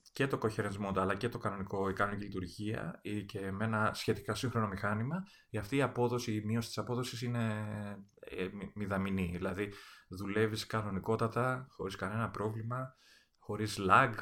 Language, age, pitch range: Greek, 30-49, 100-125 Hz